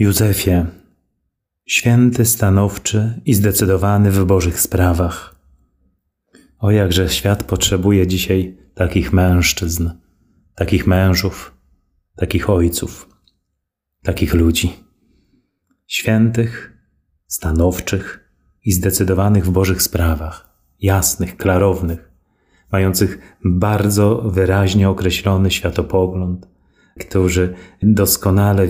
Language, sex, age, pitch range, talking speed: Polish, male, 30-49, 90-100 Hz, 75 wpm